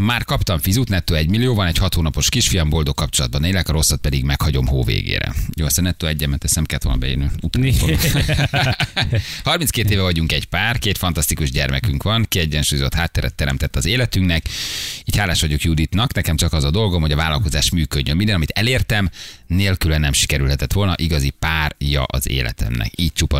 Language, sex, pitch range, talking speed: Hungarian, male, 75-95 Hz, 170 wpm